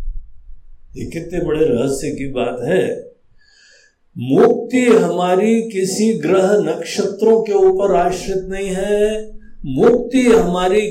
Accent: native